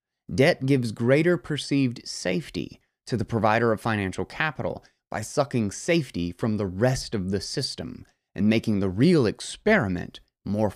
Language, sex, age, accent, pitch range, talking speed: English, male, 30-49, American, 105-140 Hz, 145 wpm